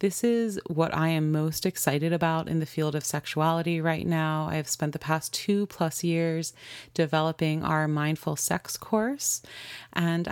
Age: 30-49